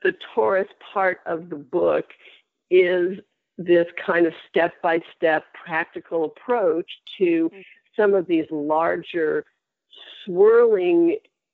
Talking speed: 100 wpm